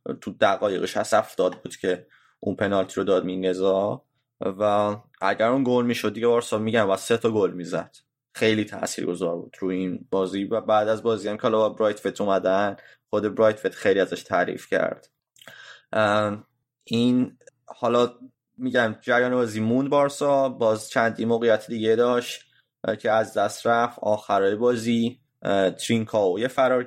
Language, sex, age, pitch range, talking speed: Persian, male, 20-39, 105-125 Hz, 145 wpm